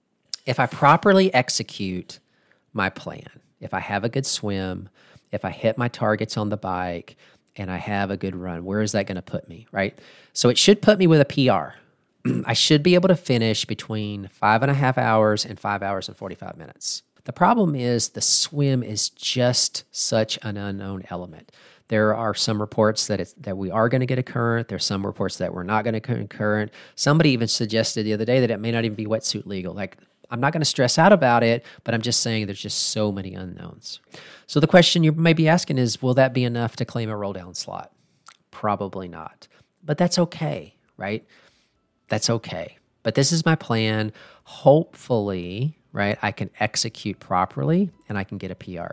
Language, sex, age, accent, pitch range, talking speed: English, male, 40-59, American, 105-135 Hz, 210 wpm